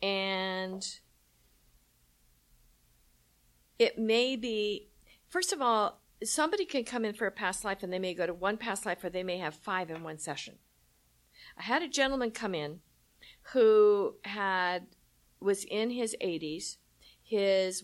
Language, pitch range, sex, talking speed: English, 155-205 Hz, female, 150 wpm